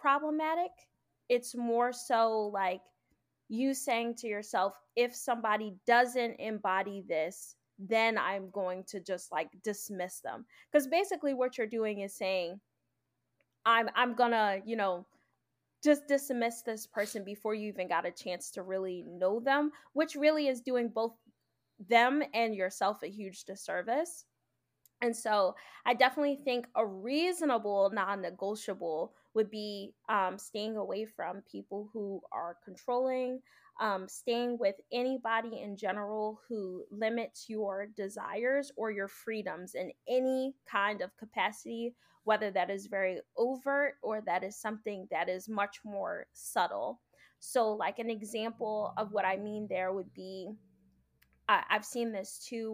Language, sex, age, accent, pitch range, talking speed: English, female, 10-29, American, 195-245 Hz, 140 wpm